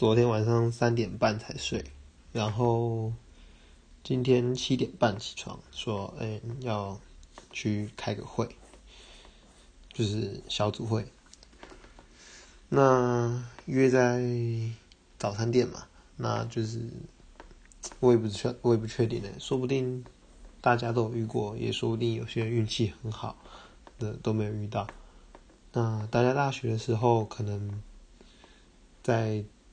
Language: English